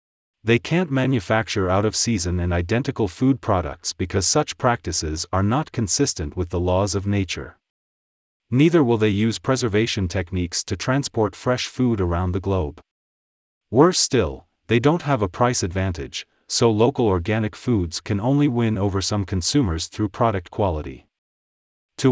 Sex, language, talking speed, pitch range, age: male, English, 150 wpm, 90-120 Hz, 40-59